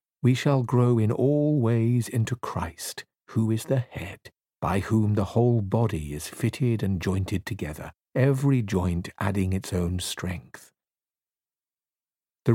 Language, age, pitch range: English, 50-69, 95-130 Hz